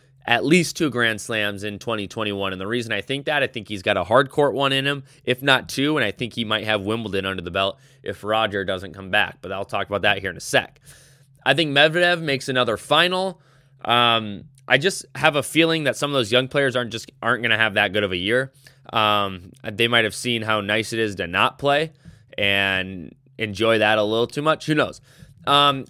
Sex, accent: male, American